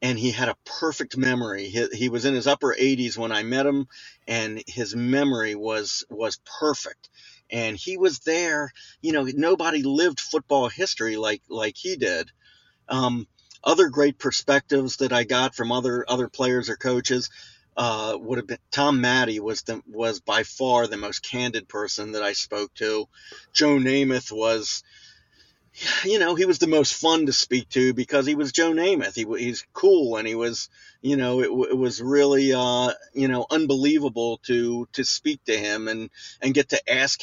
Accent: American